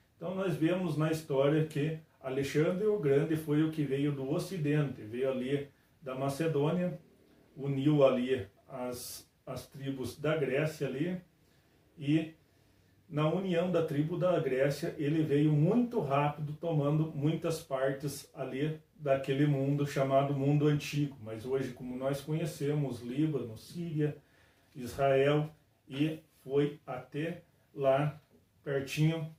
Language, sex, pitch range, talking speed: Portuguese, male, 135-155 Hz, 125 wpm